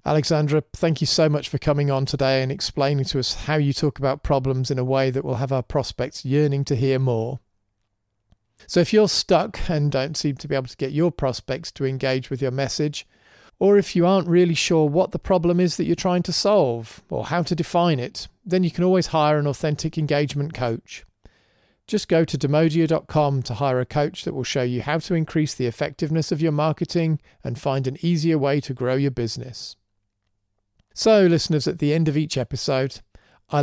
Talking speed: 205 wpm